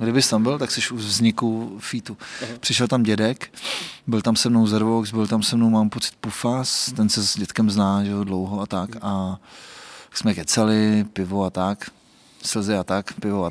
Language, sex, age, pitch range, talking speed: Czech, male, 20-39, 100-115 Hz, 195 wpm